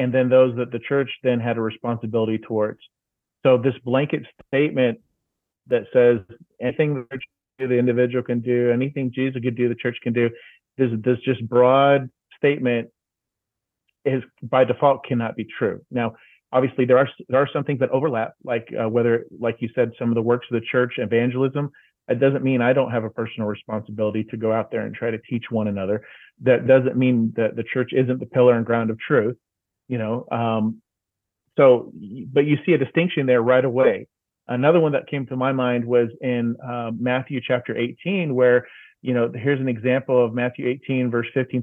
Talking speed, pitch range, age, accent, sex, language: 190 wpm, 120-135 Hz, 30-49, American, male, English